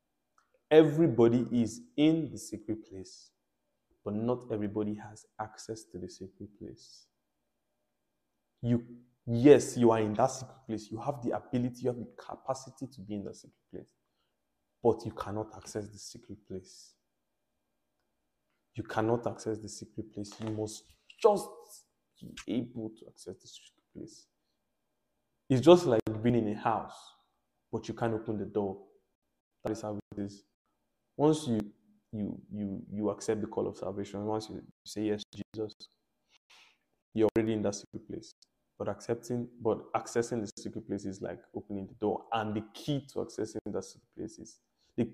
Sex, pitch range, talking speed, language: male, 105-120 Hz, 160 wpm, English